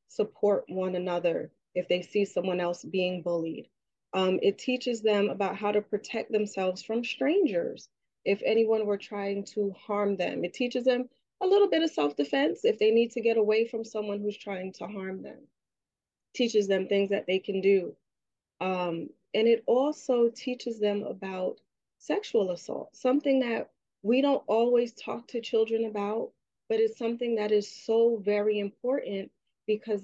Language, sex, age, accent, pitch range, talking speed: English, female, 30-49, American, 180-230 Hz, 165 wpm